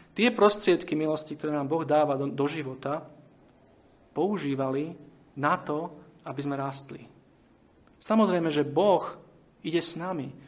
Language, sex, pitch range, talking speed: Slovak, male, 140-175 Hz, 125 wpm